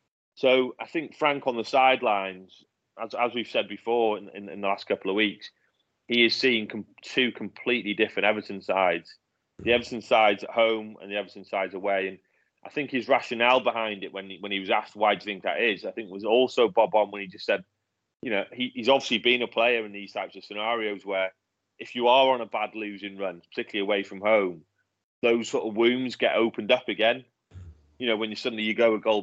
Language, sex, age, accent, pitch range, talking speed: English, male, 30-49, British, 100-120 Hz, 230 wpm